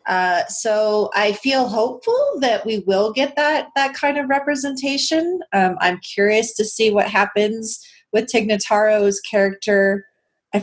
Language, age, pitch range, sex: English, 30-49, 195-260 Hz, female